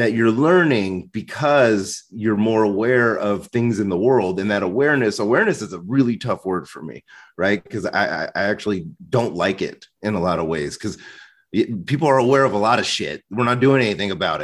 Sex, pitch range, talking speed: male, 110-140 Hz, 210 wpm